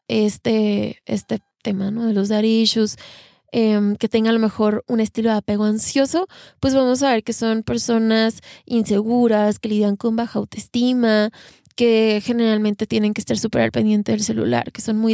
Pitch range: 210-235 Hz